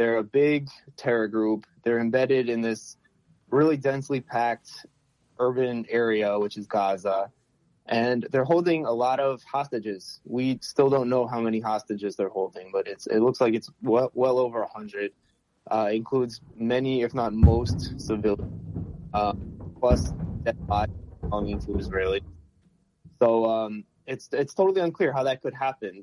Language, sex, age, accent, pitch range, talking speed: English, male, 20-39, American, 110-135 Hz, 155 wpm